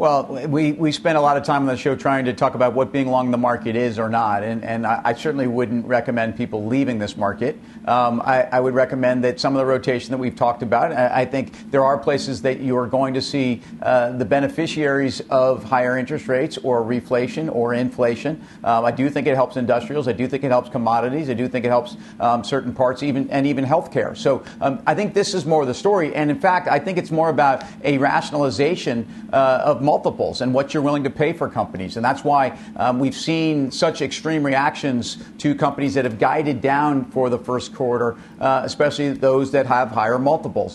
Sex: male